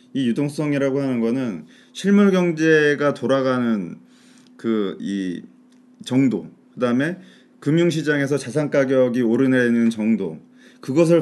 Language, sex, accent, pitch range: Korean, male, native, 120-175 Hz